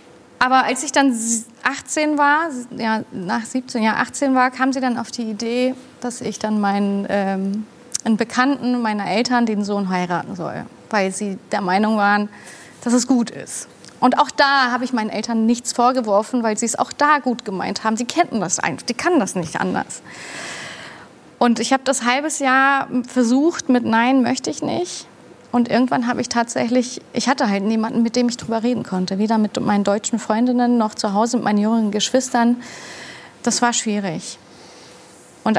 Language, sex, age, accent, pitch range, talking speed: German, female, 30-49, German, 215-255 Hz, 185 wpm